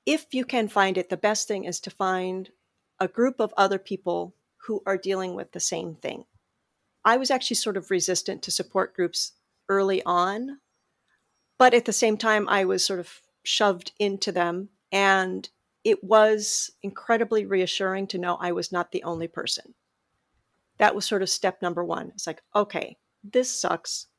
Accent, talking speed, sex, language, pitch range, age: American, 175 wpm, female, English, 175-210 Hz, 40-59